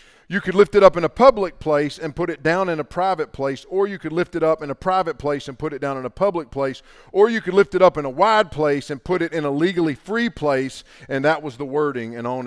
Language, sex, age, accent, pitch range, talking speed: English, male, 50-69, American, 145-185 Hz, 290 wpm